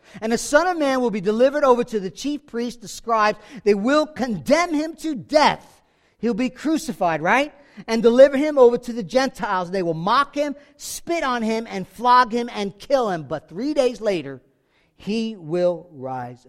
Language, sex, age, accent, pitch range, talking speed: English, male, 50-69, American, 195-275 Hz, 190 wpm